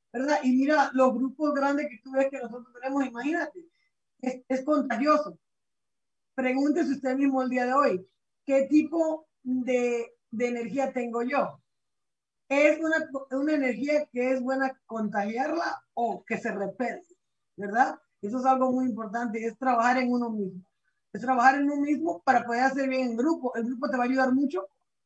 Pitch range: 240-280 Hz